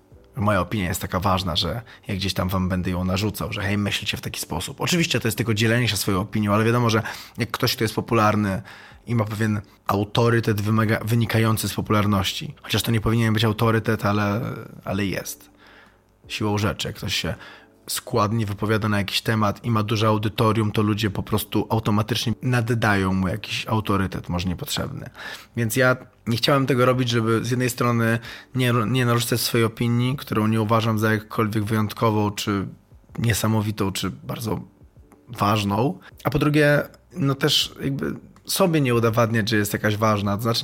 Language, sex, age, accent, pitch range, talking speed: Polish, male, 20-39, native, 105-125 Hz, 175 wpm